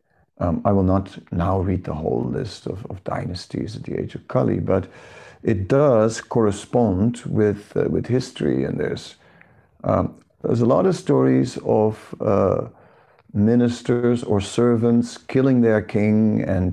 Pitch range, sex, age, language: 95-120 Hz, male, 50-69, English